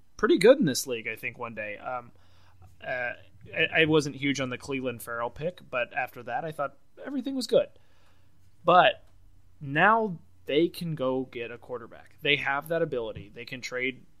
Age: 20-39